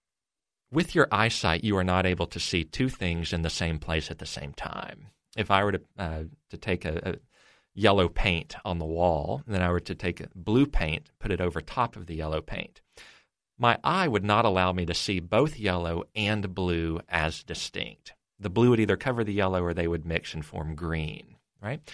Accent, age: American, 40-59